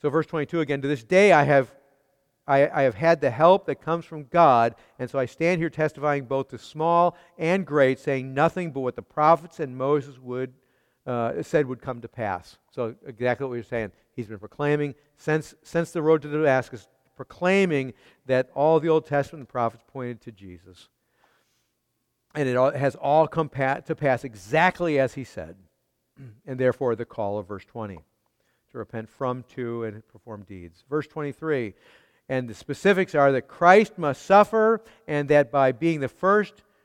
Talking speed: 185 wpm